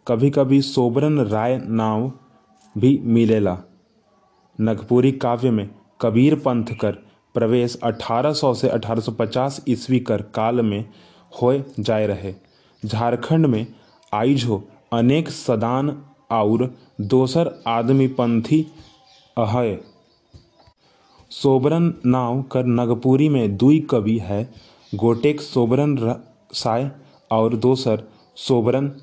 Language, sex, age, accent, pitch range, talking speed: Hindi, male, 20-39, native, 110-135 Hz, 95 wpm